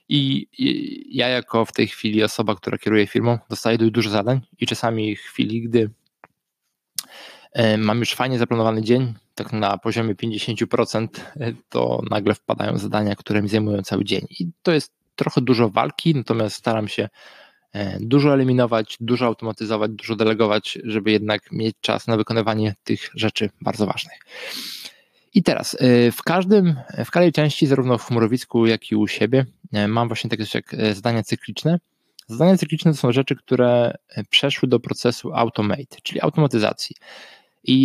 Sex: male